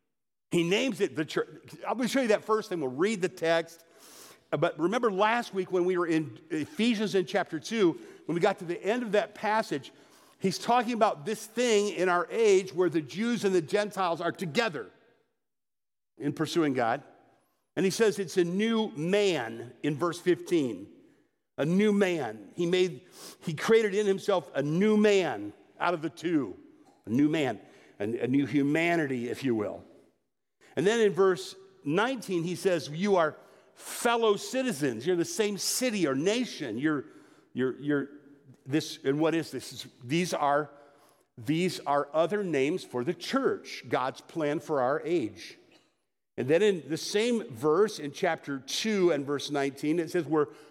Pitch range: 155-215 Hz